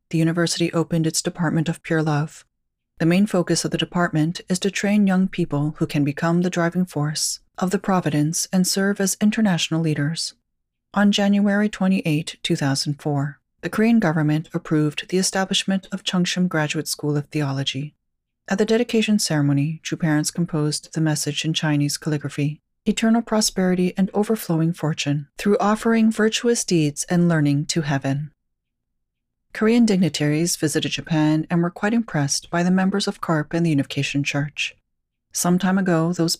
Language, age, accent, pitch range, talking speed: English, 40-59, American, 150-190 Hz, 155 wpm